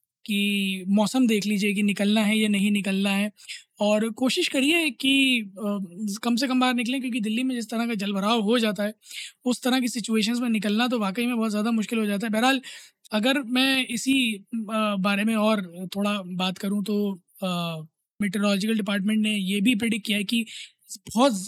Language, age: Hindi, 20-39